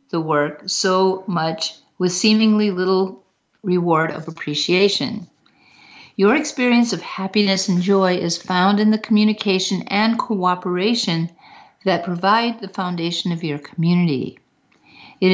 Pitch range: 180-225 Hz